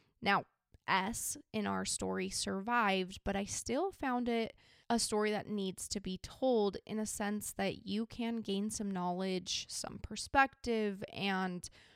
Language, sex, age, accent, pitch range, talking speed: English, female, 20-39, American, 190-230 Hz, 150 wpm